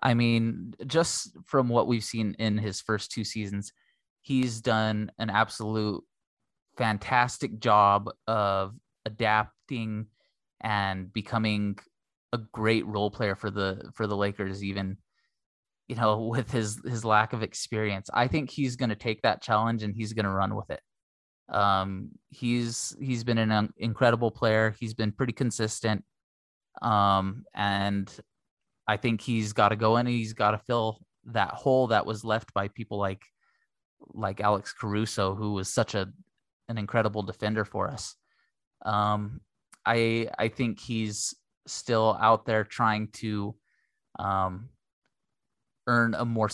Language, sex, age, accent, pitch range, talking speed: English, male, 20-39, American, 105-120 Hz, 150 wpm